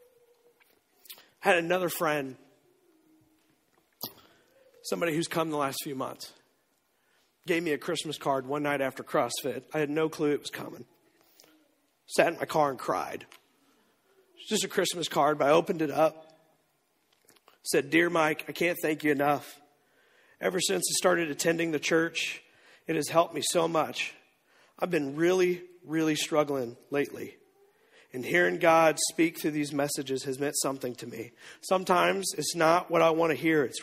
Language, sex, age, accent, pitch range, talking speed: English, male, 40-59, American, 150-195 Hz, 165 wpm